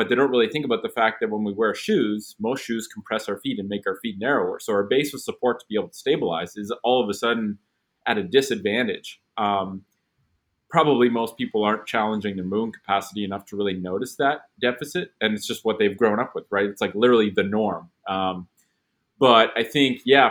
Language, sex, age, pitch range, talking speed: English, male, 30-49, 100-125 Hz, 220 wpm